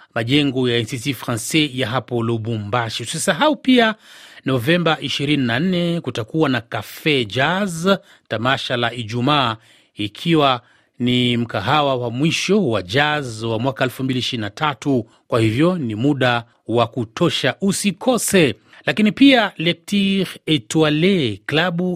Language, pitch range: Swahili, 120-170 Hz